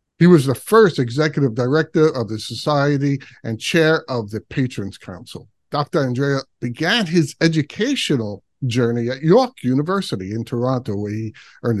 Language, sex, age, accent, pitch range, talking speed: English, male, 50-69, American, 115-155 Hz, 145 wpm